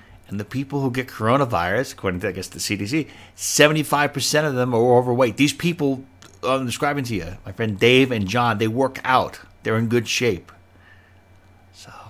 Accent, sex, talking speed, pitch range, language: American, male, 180 wpm, 95-115 Hz, English